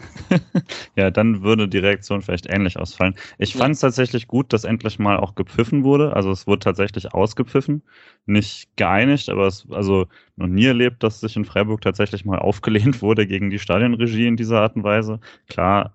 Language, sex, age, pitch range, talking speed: German, male, 30-49, 95-110 Hz, 185 wpm